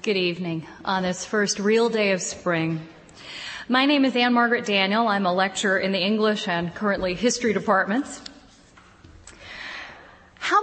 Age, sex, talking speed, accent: 30-49, female, 145 wpm, American